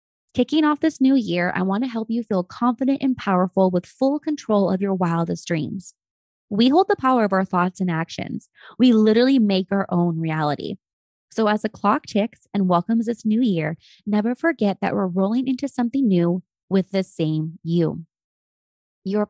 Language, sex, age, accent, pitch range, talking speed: English, female, 20-39, American, 180-230 Hz, 185 wpm